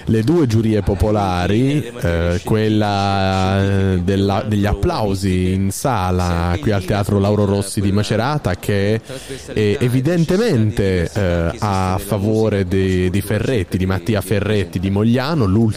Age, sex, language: 30-49, male, Italian